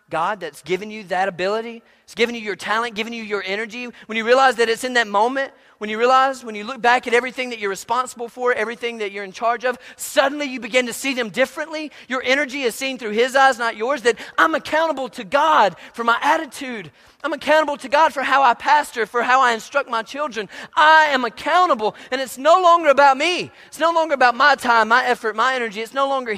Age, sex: 30-49, male